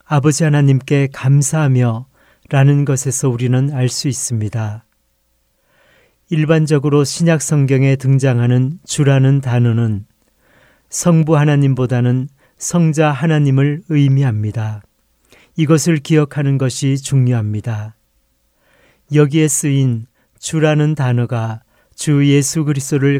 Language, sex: Korean, male